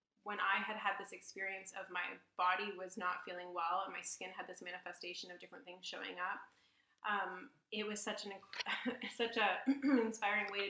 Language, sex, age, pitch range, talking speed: English, female, 20-39, 185-215 Hz, 190 wpm